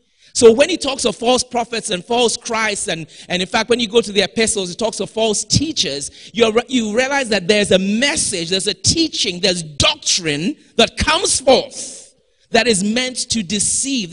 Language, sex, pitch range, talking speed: English, male, 180-235 Hz, 190 wpm